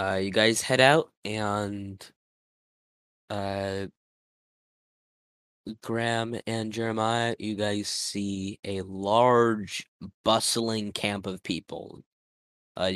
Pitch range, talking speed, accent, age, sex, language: 95-110 Hz, 95 wpm, American, 10-29, male, English